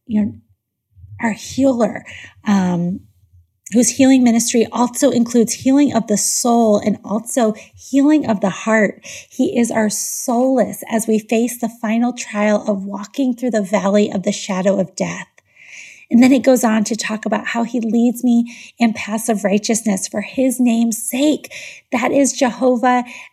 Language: English